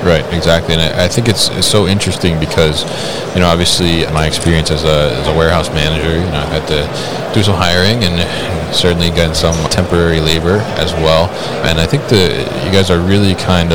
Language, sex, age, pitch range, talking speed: English, male, 20-39, 80-90 Hz, 205 wpm